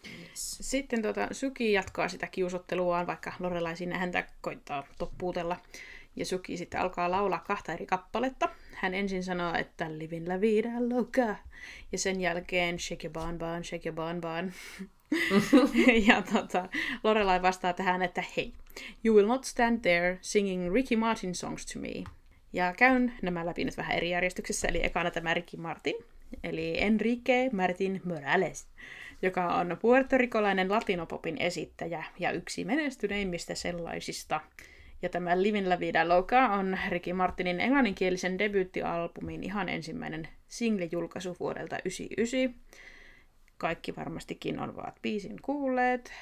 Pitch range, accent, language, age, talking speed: 180-225 Hz, native, Finnish, 20-39, 130 wpm